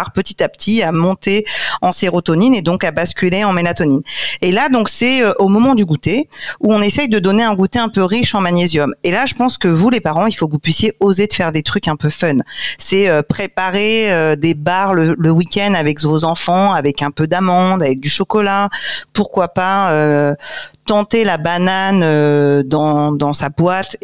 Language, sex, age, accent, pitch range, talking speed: French, female, 40-59, French, 155-205 Hz, 210 wpm